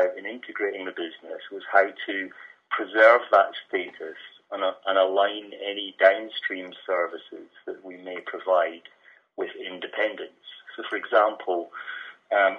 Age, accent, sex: 40-59, British, male